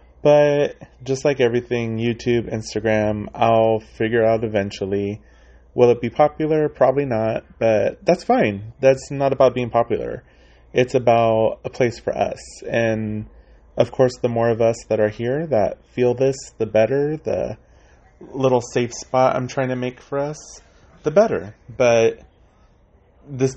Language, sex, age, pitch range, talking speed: English, male, 30-49, 105-125 Hz, 150 wpm